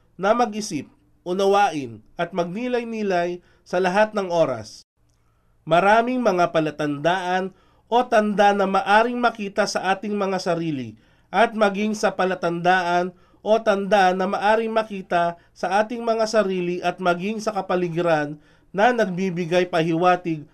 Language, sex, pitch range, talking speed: Filipino, male, 170-220 Hz, 120 wpm